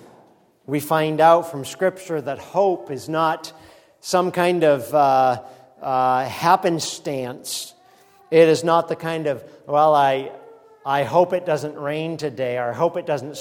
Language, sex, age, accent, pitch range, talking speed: English, male, 50-69, American, 150-215 Hz, 150 wpm